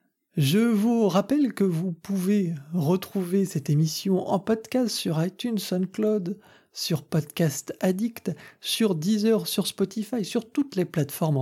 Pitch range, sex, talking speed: 160-215 Hz, male, 130 wpm